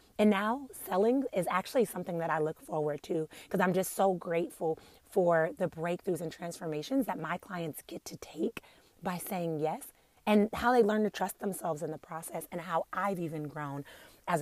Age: 30-49